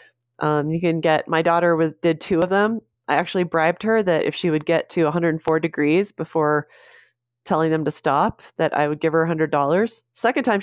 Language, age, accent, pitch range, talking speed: English, 30-49, American, 150-190 Hz, 205 wpm